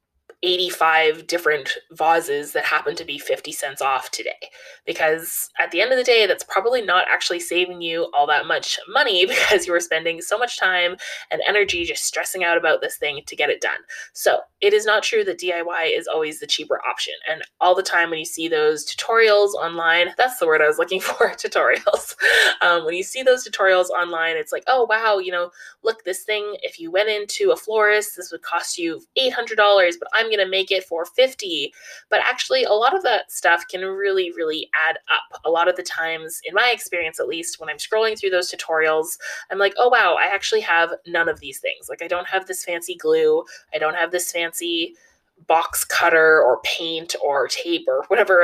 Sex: female